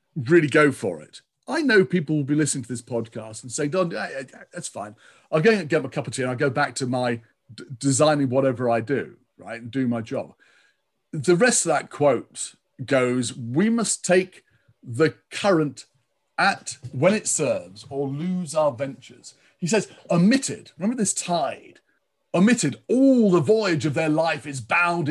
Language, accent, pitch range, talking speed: English, British, 130-180 Hz, 180 wpm